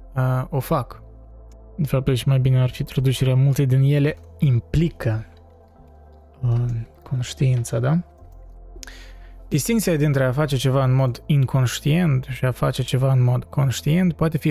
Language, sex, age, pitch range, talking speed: Romanian, male, 20-39, 120-150 Hz, 135 wpm